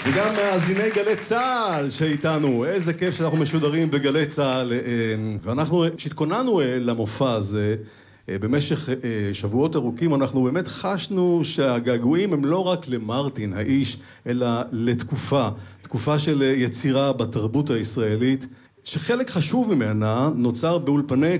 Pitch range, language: 115-150 Hz, Hebrew